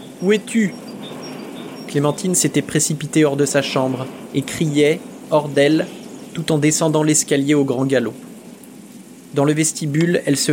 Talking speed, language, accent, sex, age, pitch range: 140 wpm, French, French, male, 20-39, 140-185 Hz